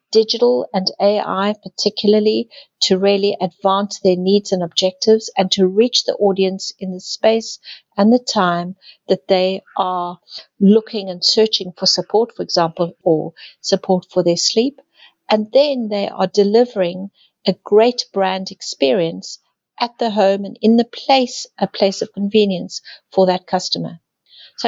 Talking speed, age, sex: 150 wpm, 60-79, female